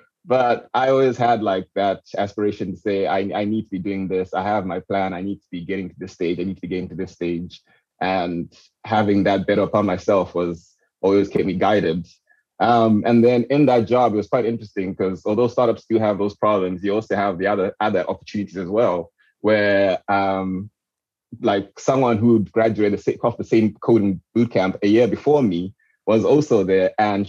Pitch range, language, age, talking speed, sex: 100-120 Hz, English, 20-39, 200 wpm, male